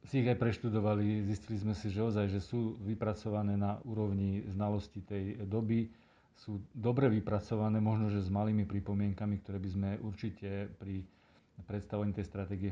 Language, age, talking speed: Slovak, 40-59, 150 wpm